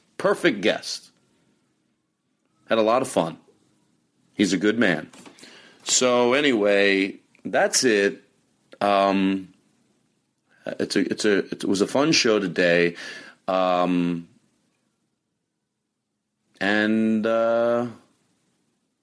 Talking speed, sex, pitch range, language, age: 90 wpm, male, 90-125 Hz, English, 40-59